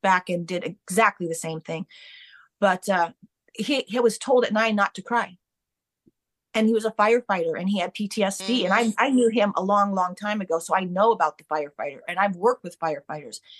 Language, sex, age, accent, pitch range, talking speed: English, female, 30-49, American, 185-230 Hz, 210 wpm